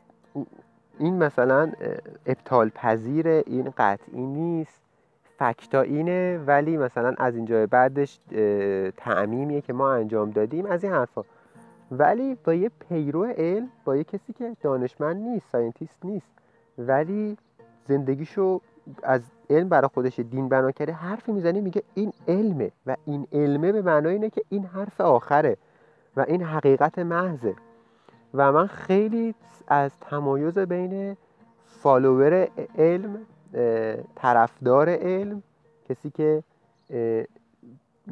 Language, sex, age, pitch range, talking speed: Persian, male, 30-49, 115-175 Hz, 115 wpm